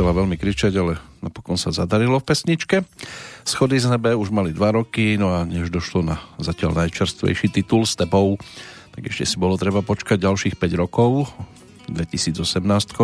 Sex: male